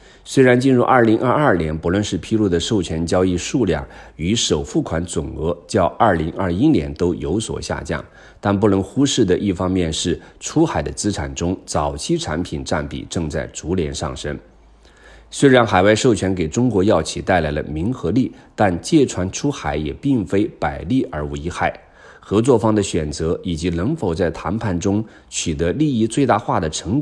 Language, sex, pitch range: Chinese, male, 80-105 Hz